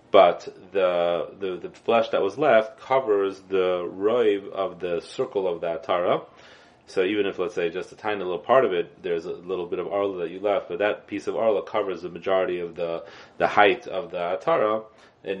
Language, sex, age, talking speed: English, male, 30-49, 210 wpm